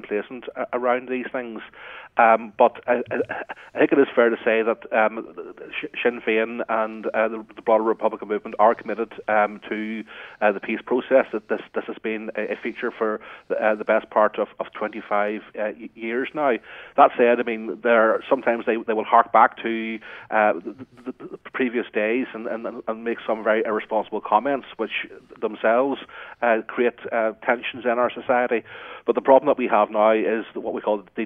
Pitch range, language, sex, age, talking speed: 110-120 Hz, English, male, 30-49, 190 wpm